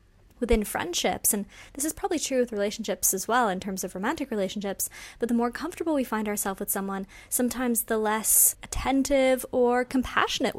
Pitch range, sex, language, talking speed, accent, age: 210-265 Hz, female, English, 175 wpm, American, 20-39